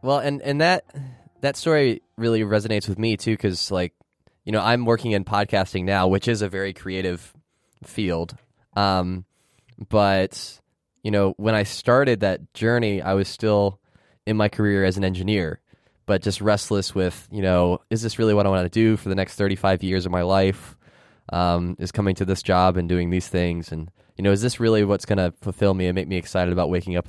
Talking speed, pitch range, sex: 210 wpm, 95-115 Hz, male